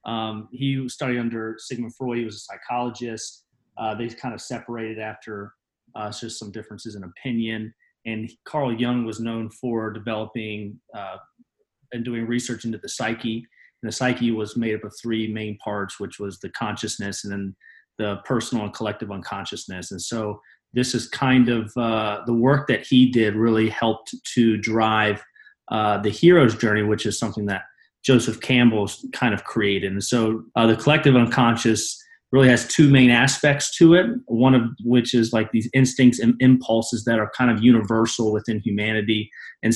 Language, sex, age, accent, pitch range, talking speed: English, male, 30-49, American, 110-125 Hz, 175 wpm